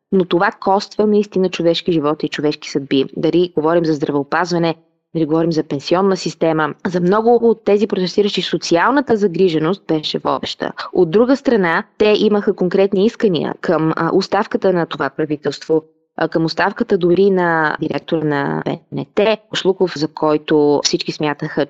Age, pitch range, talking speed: 20-39, 155-195 Hz, 145 wpm